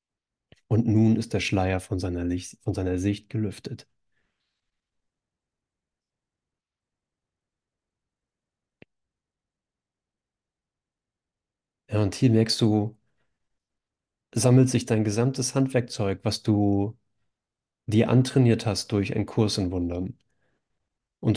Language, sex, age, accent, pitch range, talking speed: German, male, 40-59, German, 100-120 Hz, 85 wpm